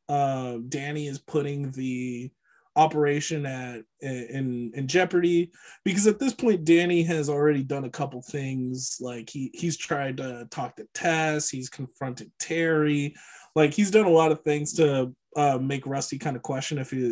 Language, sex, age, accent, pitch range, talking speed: English, male, 20-39, American, 130-165 Hz, 170 wpm